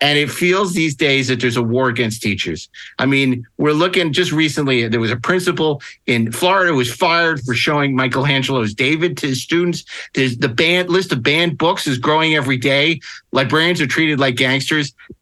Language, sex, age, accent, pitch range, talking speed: English, male, 50-69, American, 130-170 Hz, 190 wpm